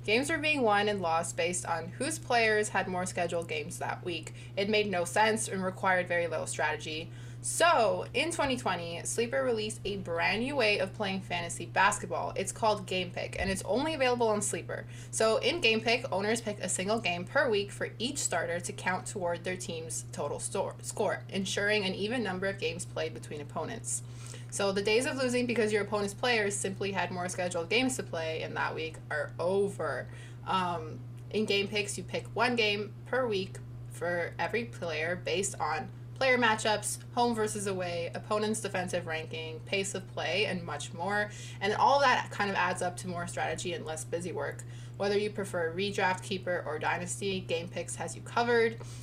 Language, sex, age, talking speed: English, female, 20-39, 190 wpm